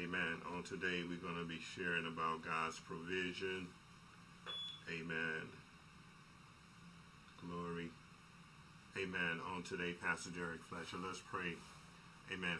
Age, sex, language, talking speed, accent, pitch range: 50-69, male, English, 105 wpm, American, 85-95 Hz